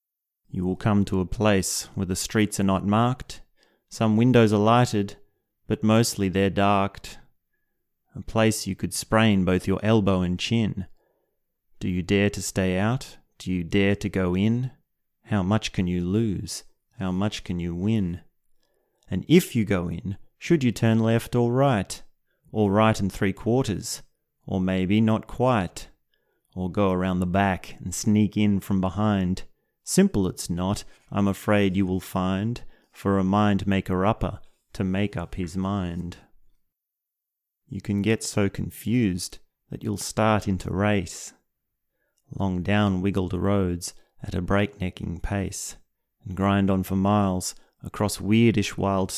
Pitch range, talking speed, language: 95-110 Hz, 155 wpm, English